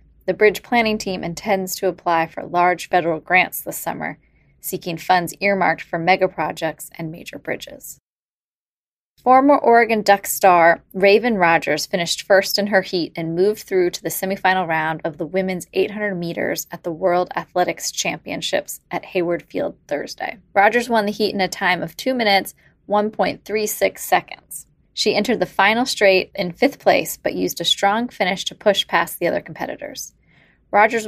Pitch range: 175-205 Hz